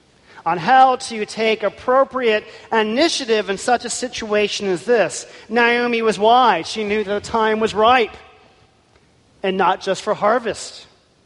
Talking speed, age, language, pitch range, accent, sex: 145 wpm, 40-59, English, 180-235 Hz, American, male